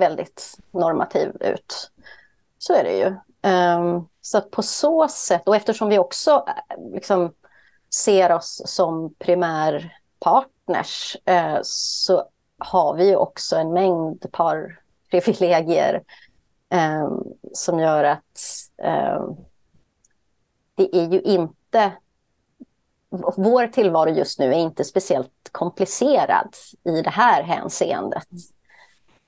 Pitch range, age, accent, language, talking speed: 155-195 Hz, 30-49, native, Swedish, 100 wpm